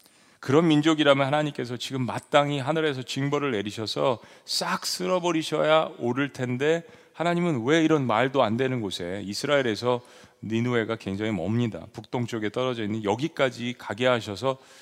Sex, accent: male, native